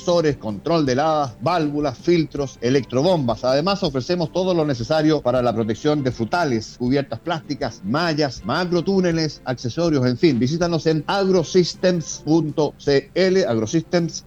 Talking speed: 120 wpm